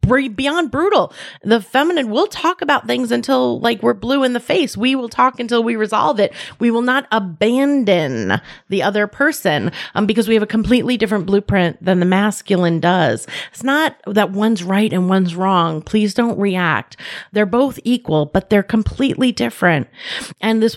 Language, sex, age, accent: English, female, 30-49, American